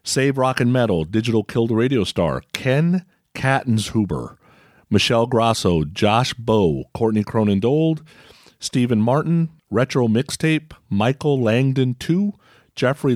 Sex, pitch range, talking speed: male, 115-155 Hz, 115 wpm